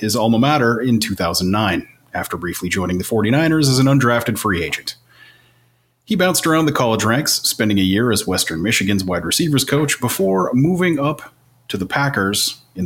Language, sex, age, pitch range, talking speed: English, male, 30-49, 100-135 Hz, 175 wpm